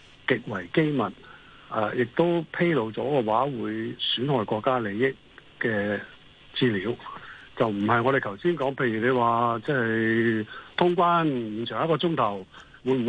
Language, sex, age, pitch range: Chinese, male, 60-79, 110-145 Hz